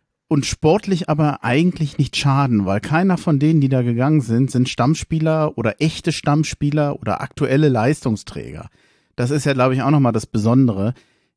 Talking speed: 165 wpm